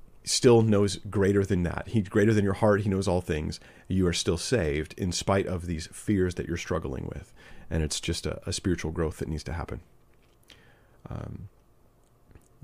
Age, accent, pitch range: 40-59, American, 85-110 Hz